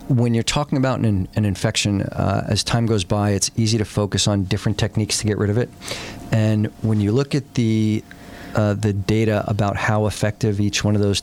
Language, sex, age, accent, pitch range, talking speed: English, male, 40-59, American, 100-115 Hz, 215 wpm